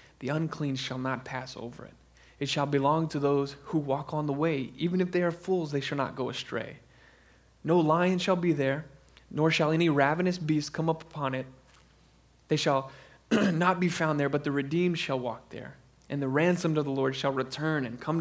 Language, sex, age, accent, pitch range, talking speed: English, male, 20-39, American, 140-175 Hz, 210 wpm